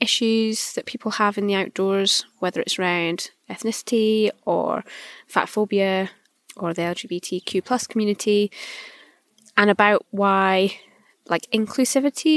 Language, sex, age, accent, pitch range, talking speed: English, female, 20-39, British, 190-235 Hz, 110 wpm